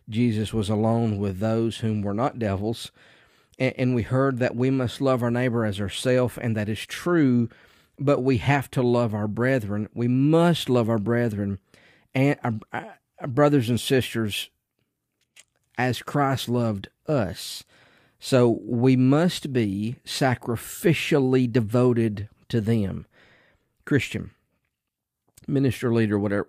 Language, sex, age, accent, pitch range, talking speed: English, male, 50-69, American, 105-125 Hz, 130 wpm